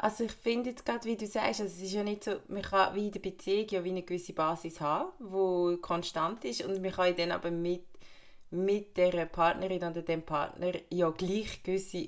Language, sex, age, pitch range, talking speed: German, female, 20-39, 165-190 Hz, 215 wpm